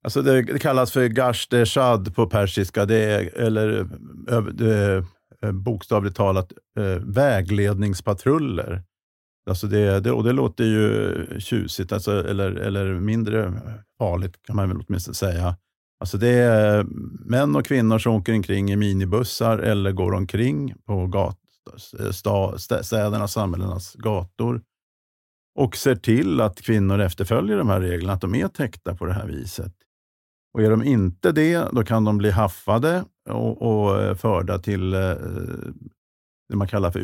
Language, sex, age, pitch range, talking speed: Swedish, male, 50-69, 95-115 Hz, 145 wpm